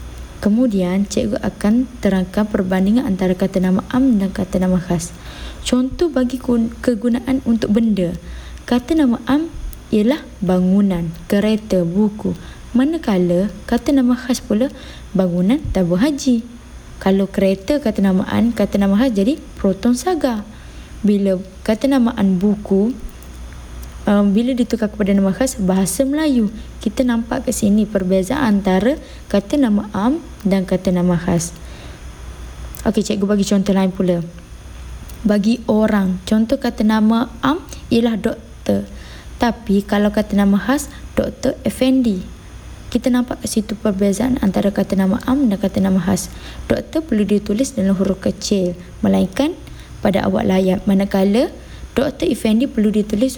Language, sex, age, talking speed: Malay, female, 20-39, 135 wpm